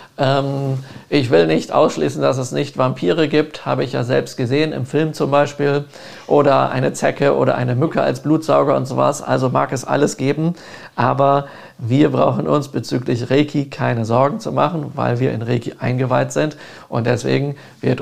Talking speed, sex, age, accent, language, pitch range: 175 wpm, male, 50-69, German, German, 120-140 Hz